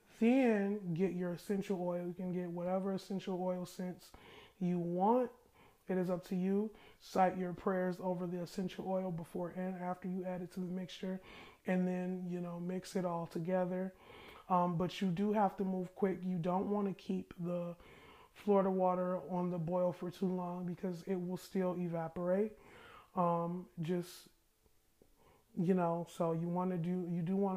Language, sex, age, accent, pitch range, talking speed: English, male, 20-39, American, 175-190 Hz, 180 wpm